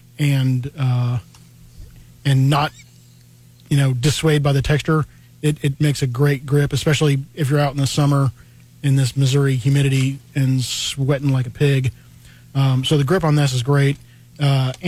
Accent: American